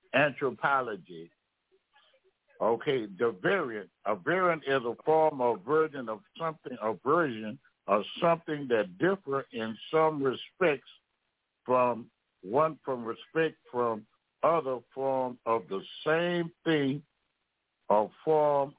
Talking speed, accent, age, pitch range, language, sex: 110 wpm, American, 60-79, 115-155 Hz, English, male